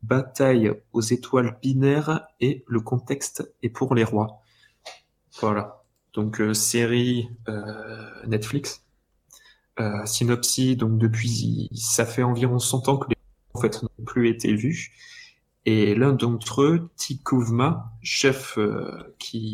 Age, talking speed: 20-39, 125 wpm